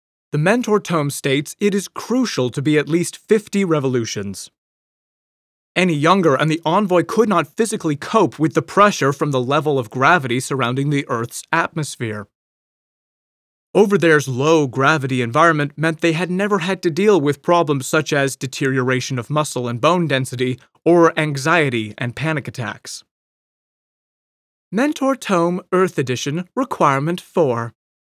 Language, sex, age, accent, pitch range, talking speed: English, male, 30-49, American, 130-180 Hz, 140 wpm